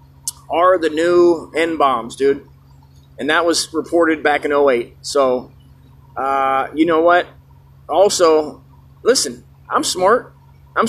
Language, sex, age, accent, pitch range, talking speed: English, male, 30-49, American, 130-190 Hz, 125 wpm